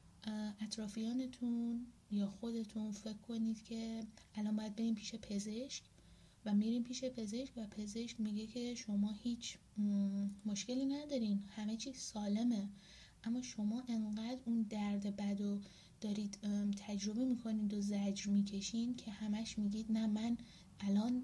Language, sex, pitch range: Persian, female, 200-225 Hz